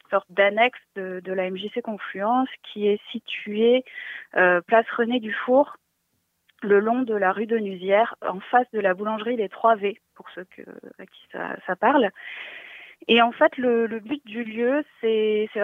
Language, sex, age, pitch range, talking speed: French, female, 20-39, 190-235 Hz, 170 wpm